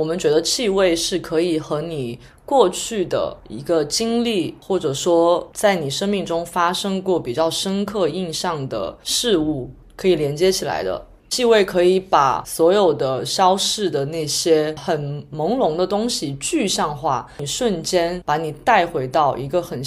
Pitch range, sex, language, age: 155-215 Hz, female, Chinese, 20-39